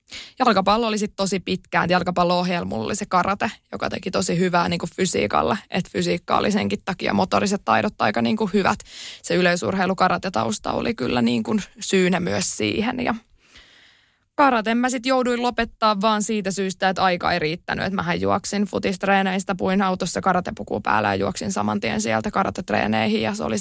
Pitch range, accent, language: 170-205 Hz, native, Finnish